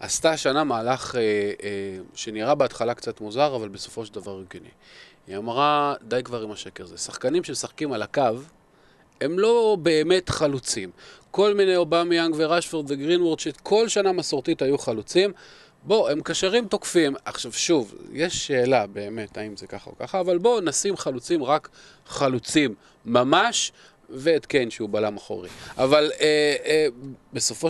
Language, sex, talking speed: Hebrew, male, 155 wpm